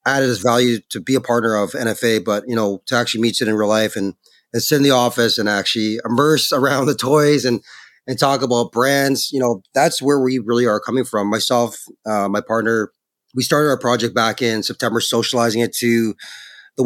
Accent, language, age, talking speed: American, English, 30-49, 215 wpm